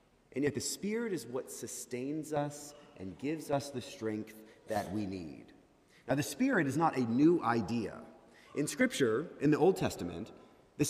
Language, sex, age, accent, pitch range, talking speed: English, male, 30-49, American, 125-195 Hz, 170 wpm